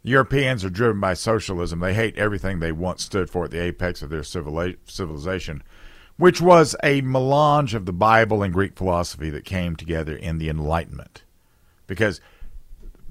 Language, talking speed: English, 165 wpm